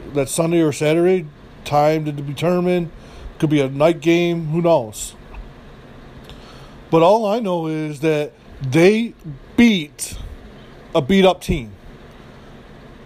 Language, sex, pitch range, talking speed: English, male, 150-185 Hz, 115 wpm